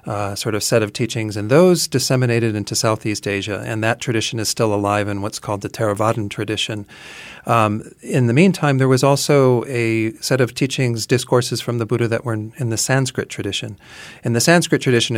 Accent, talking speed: American, 200 wpm